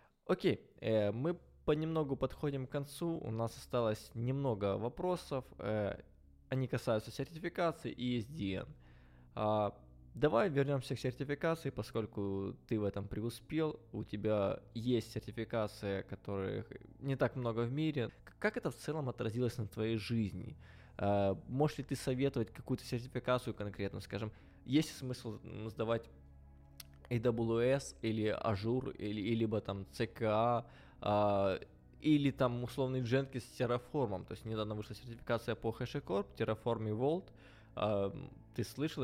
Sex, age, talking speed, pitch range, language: male, 20-39, 130 wpm, 105-135 Hz, English